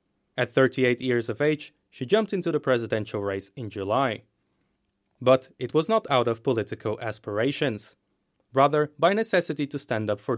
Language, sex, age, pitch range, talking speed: English, male, 30-49, 105-150 Hz, 160 wpm